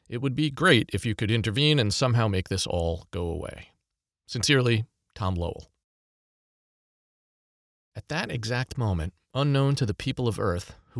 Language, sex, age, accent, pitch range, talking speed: English, male, 40-59, American, 95-135 Hz, 160 wpm